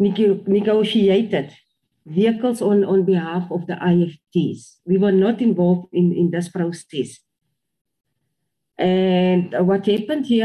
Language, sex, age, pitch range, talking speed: English, female, 40-59, 180-230 Hz, 115 wpm